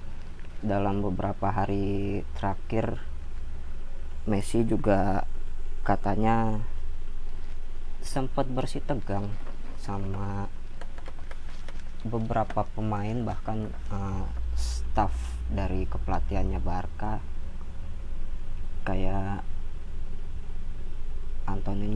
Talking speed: 55 wpm